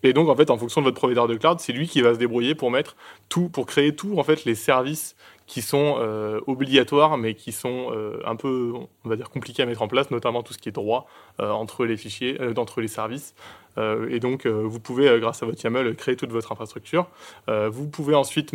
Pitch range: 110-135 Hz